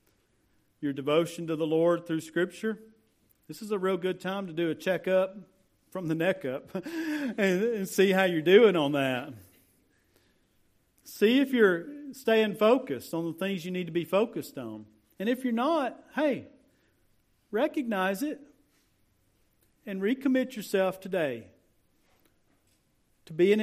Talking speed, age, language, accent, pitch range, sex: 140 wpm, 50-69, English, American, 135-195 Hz, male